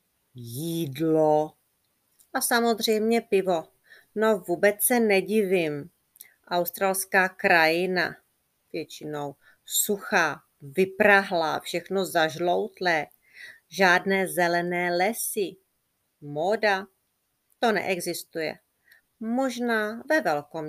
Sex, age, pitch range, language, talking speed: female, 30-49, 155-210 Hz, Czech, 70 wpm